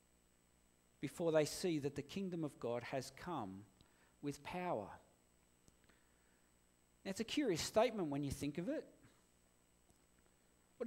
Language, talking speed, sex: English, 120 wpm, male